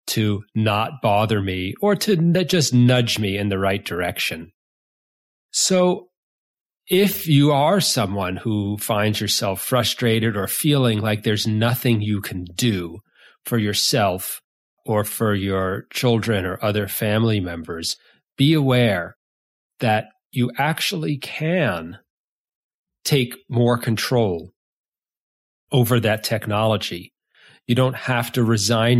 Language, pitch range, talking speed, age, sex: English, 100-120 Hz, 120 wpm, 40-59, male